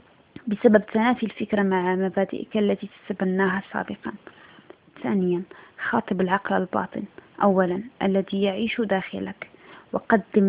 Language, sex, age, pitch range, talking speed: Arabic, female, 20-39, 190-215 Hz, 95 wpm